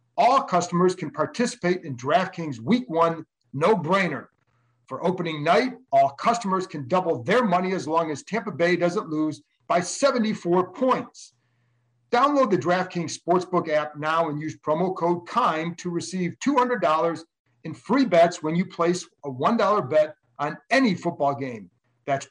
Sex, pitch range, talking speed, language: male, 145-190 Hz, 150 wpm, English